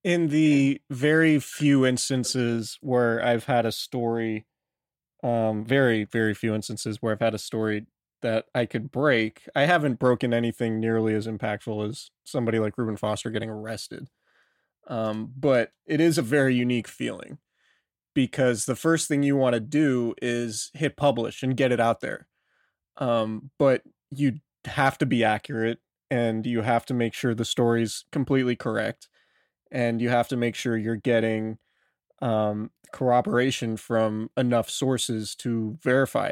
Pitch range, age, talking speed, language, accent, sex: 115-135 Hz, 20-39, 155 wpm, English, American, male